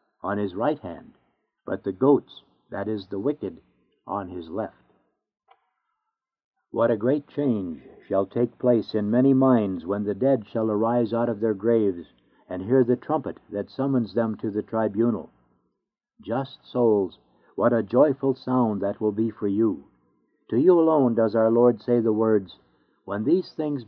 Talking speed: 165 wpm